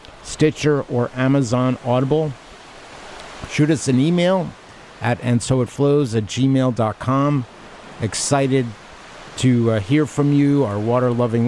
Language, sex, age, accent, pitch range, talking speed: English, male, 50-69, American, 120-145 Hz, 115 wpm